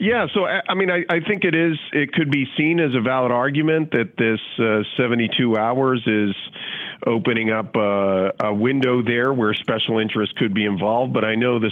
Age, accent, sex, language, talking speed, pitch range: 50-69, American, male, English, 205 wpm, 100-125 Hz